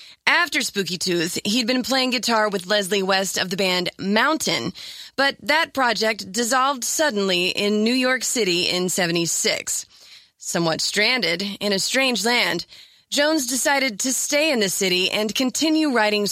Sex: female